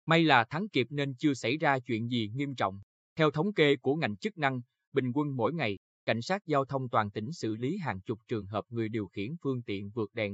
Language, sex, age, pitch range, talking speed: Vietnamese, male, 20-39, 110-150 Hz, 245 wpm